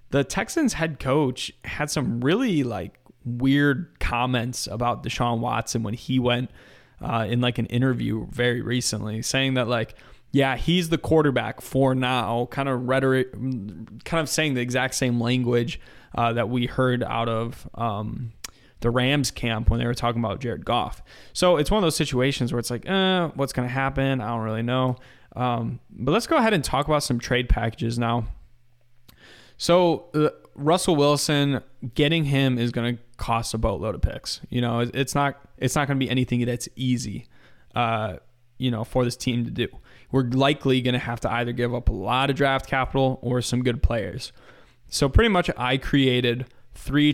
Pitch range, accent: 120-135 Hz, American